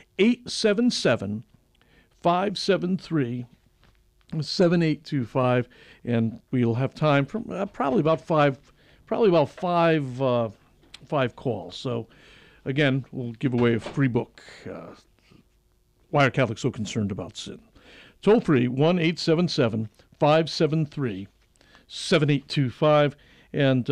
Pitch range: 120-155 Hz